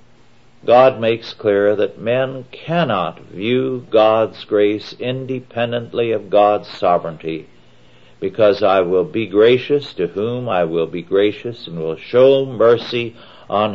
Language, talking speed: English, 125 wpm